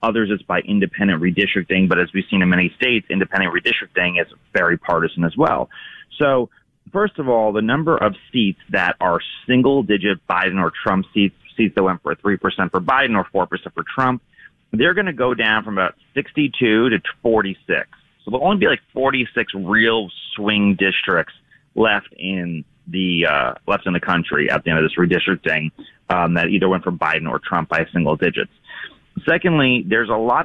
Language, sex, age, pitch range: English, male, 30-49, 90-120 Hz